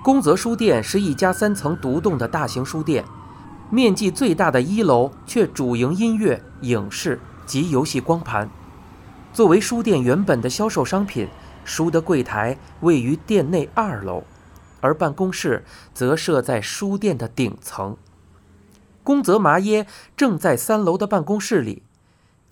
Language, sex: Chinese, male